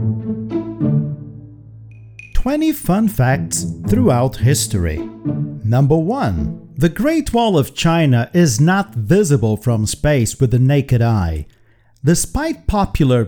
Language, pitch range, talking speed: Portuguese, 110-165 Hz, 105 wpm